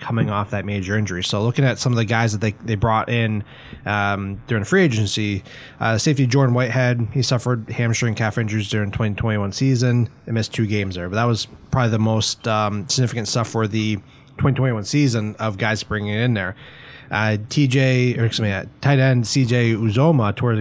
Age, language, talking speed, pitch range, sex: 30-49, English, 200 wpm, 105-125 Hz, male